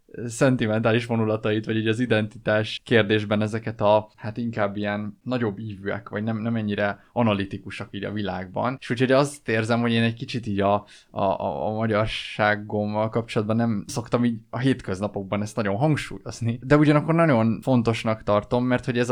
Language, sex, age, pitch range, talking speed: Hungarian, male, 20-39, 105-125 Hz, 165 wpm